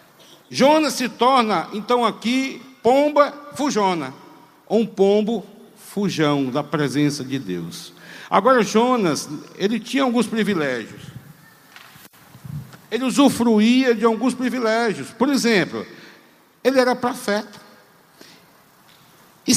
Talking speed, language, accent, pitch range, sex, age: 100 wpm, Portuguese, Brazilian, 175-235 Hz, male, 60-79